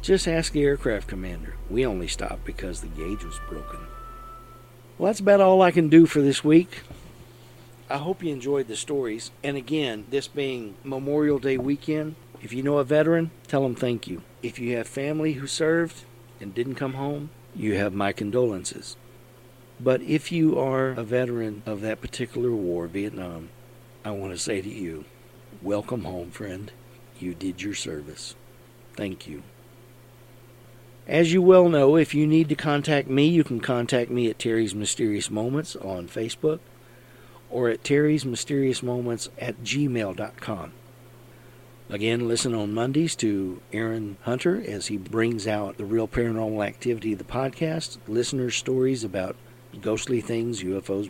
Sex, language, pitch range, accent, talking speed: male, English, 110-135 Hz, American, 160 wpm